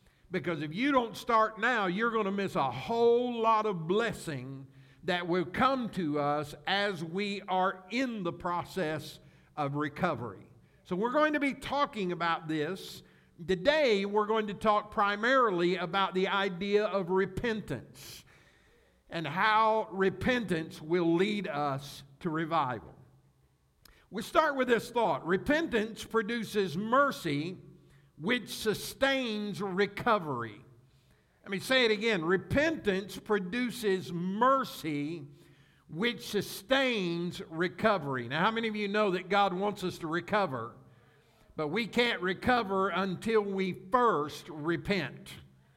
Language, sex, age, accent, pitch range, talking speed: English, male, 60-79, American, 160-220 Hz, 125 wpm